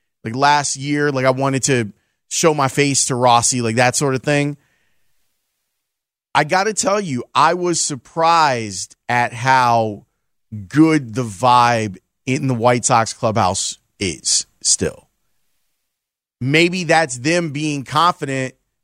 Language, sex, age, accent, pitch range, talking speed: English, male, 30-49, American, 125-155 Hz, 135 wpm